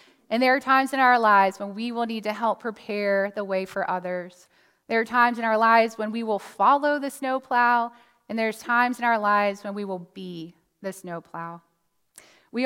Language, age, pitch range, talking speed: English, 20-39, 205-255 Hz, 205 wpm